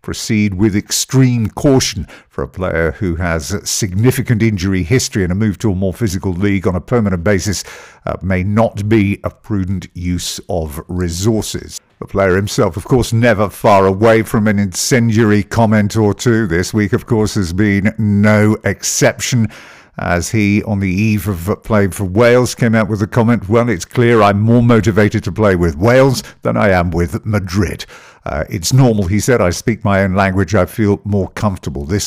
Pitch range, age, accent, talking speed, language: 95-110 Hz, 50-69, British, 185 wpm, English